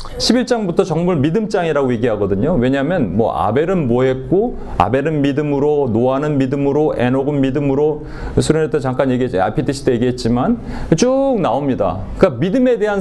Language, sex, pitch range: Korean, male, 125-195 Hz